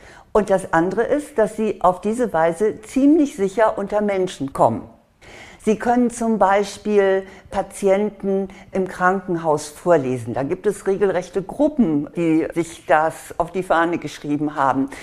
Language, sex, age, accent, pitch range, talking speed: German, female, 60-79, German, 170-215 Hz, 140 wpm